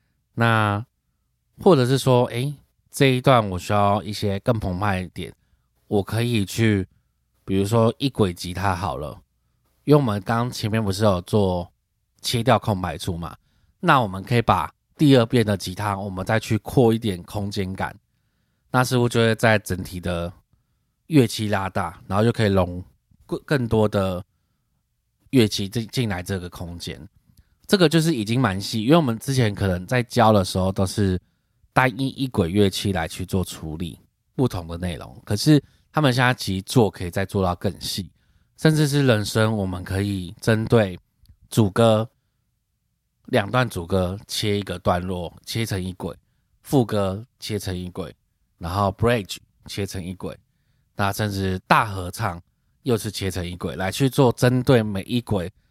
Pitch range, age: 95-120 Hz, 20-39